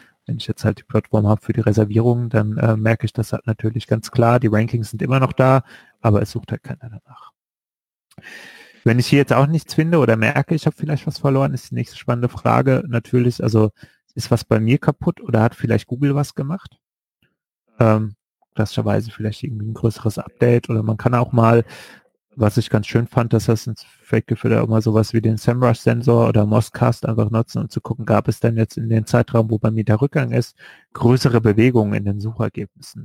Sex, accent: male, German